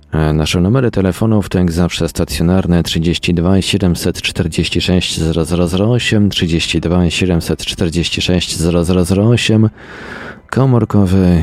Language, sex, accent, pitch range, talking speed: Polish, male, native, 80-95 Hz, 75 wpm